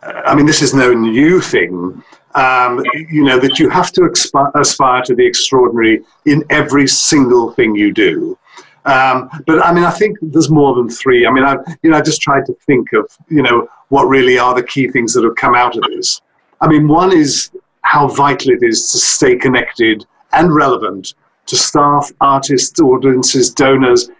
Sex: male